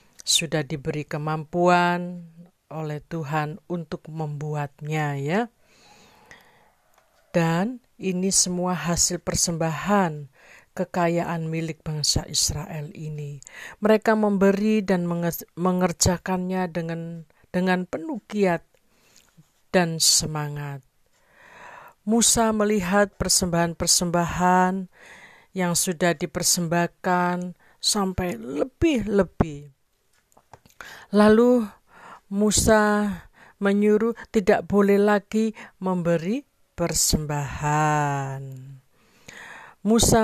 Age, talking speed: 50-69, 65 wpm